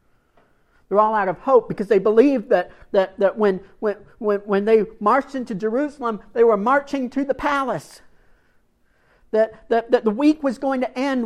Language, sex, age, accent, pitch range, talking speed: English, male, 50-69, American, 160-245 Hz, 175 wpm